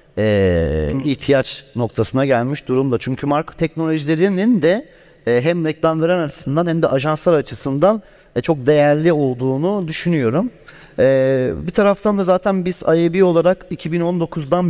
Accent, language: native, Turkish